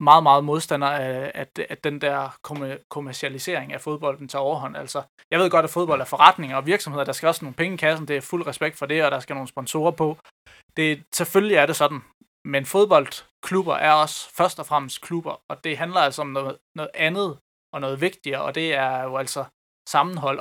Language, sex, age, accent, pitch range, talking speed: Danish, male, 20-39, native, 140-160 Hz, 210 wpm